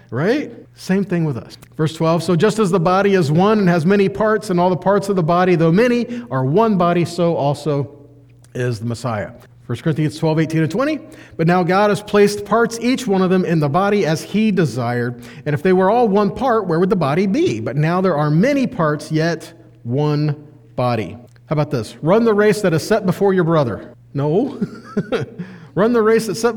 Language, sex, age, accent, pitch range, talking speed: English, male, 40-59, American, 150-205 Hz, 220 wpm